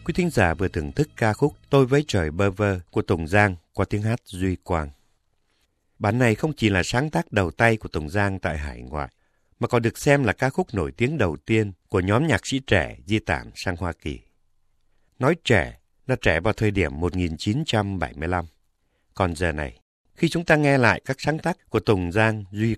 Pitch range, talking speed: 85-120 Hz, 210 wpm